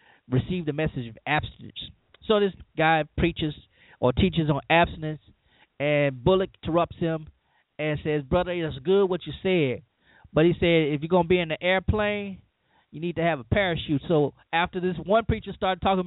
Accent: American